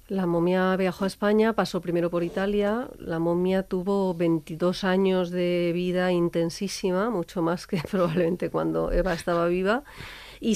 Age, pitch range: 40-59, 170-195 Hz